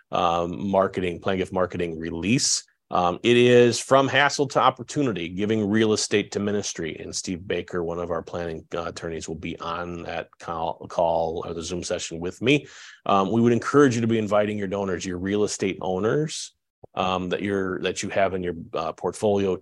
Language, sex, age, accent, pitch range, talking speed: English, male, 30-49, American, 90-110 Hz, 190 wpm